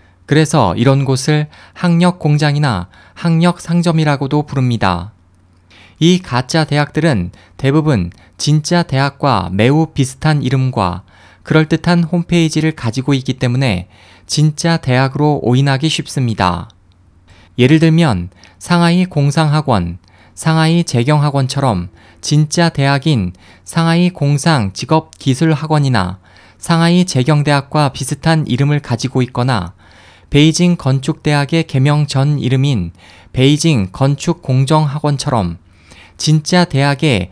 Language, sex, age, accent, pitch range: Korean, male, 20-39, native, 95-155 Hz